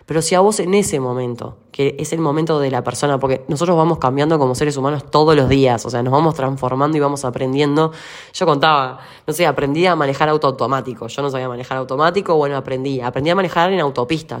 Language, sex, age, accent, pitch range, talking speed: Spanish, female, 10-29, Argentinian, 130-165 Hz, 220 wpm